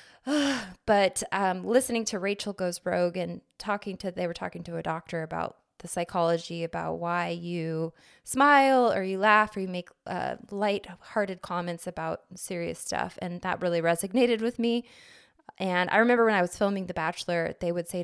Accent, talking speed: American, 180 wpm